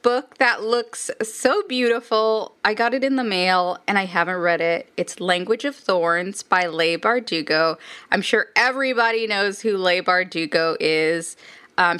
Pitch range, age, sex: 175-225 Hz, 20-39, female